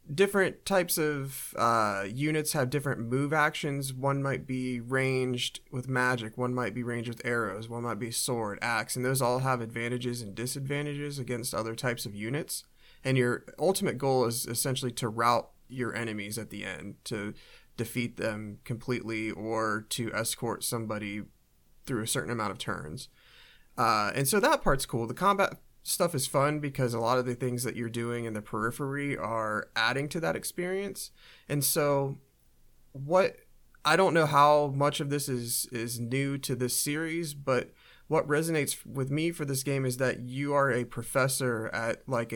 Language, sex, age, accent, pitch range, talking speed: English, male, 30-49, American, 115-140 Hz, 175 wpm